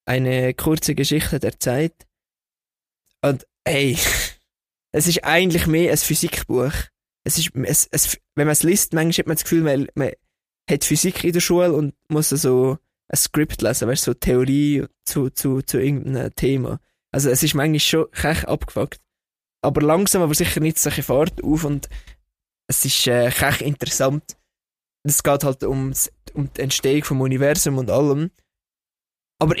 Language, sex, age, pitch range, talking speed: German, male, 20-39, 130-165 Hz, 160 wpm